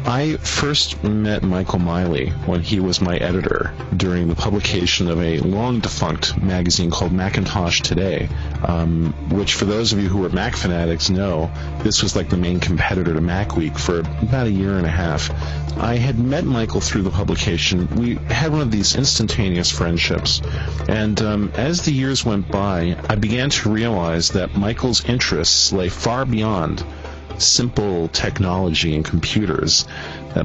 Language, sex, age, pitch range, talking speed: English, male, 40-59, 85-110 Hz, 165 wpm